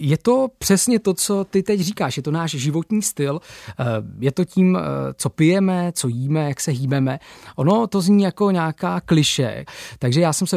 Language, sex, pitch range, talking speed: Czech, male, 135-170 Hz, 185 wpm